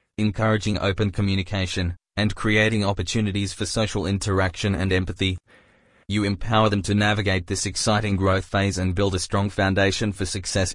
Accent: Australian